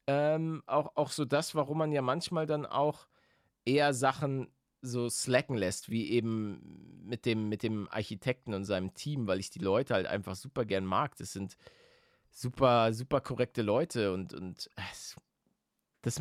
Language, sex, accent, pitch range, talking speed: German, male, German, 100-125 Hz, 165 wpm